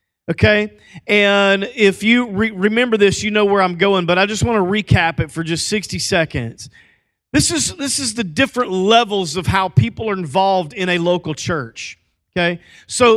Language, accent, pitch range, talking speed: English, American, 165-220 Hz, 185 wpm